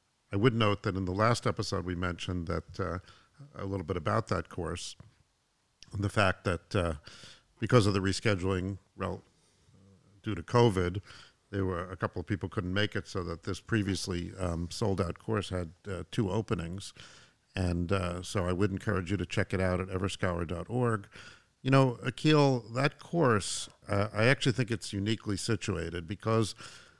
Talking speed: 175 wpm